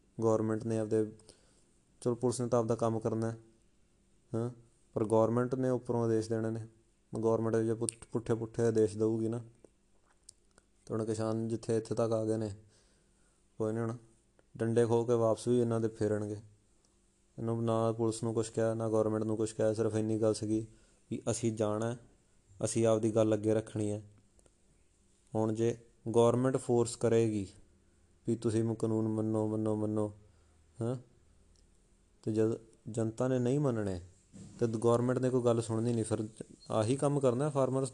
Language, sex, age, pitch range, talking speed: Punjabi, male, 20-39, 110-115 Hz, 160 wpm